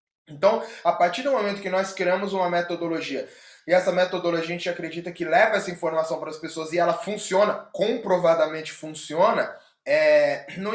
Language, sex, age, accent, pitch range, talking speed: Portuguese, male, 20-39, Brazilian, 170-210 Hz, 160 wpm